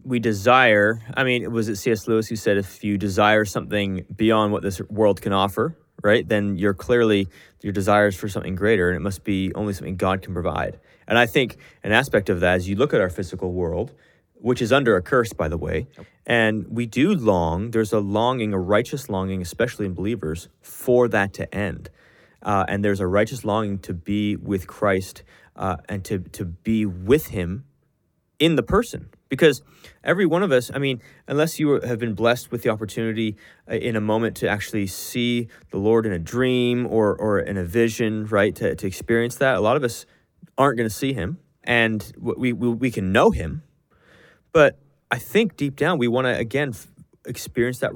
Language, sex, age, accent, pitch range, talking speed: English, male, 30-49, American, 100-120 Hz, 200 wpm